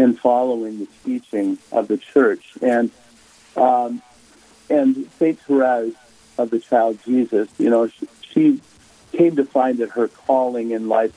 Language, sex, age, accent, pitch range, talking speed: English, male, 50-69, American, 115-135 Hz, 145 wpm